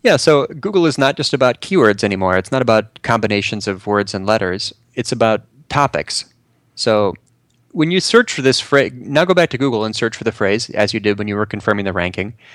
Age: 30-49